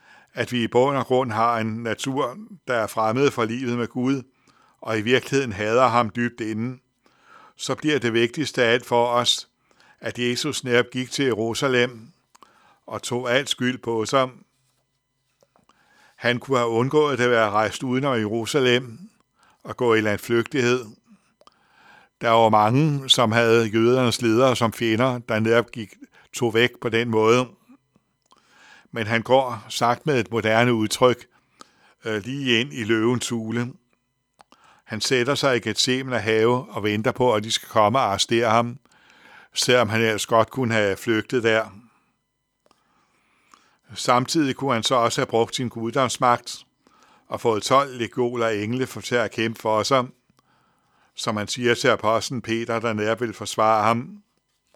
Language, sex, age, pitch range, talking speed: Danish, male, 60-79, 115-130 Hz, 160 wpm